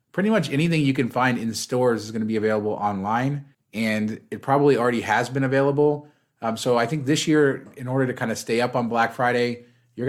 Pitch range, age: 110-135 Hz, 30-49